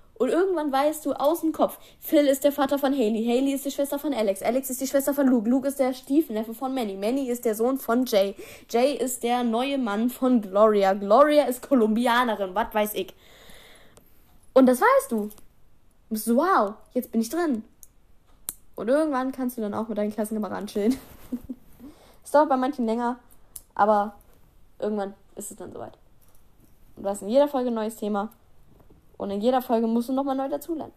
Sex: female